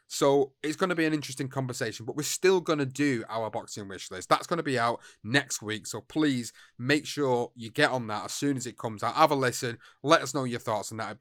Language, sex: English, male